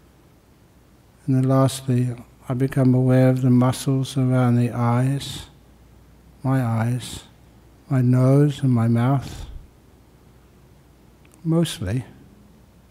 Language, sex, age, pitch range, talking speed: English, male, 60-79, 120-140 Hz, 95 wpm